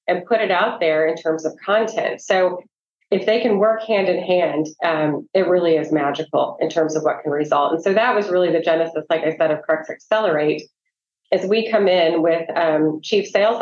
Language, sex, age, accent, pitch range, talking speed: English, female, 30-49, American, 165-200 Hz, 215 wpm